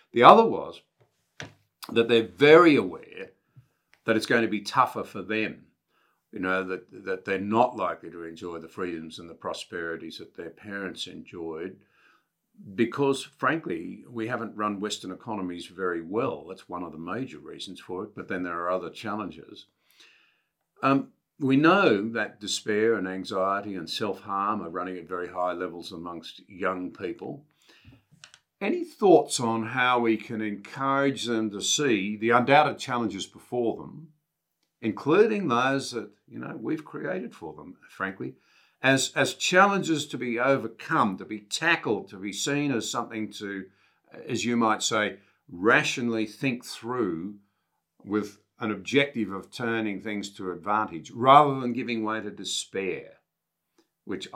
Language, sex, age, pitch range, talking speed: English, male, 50-69, 100-130 Hz, 150 wpm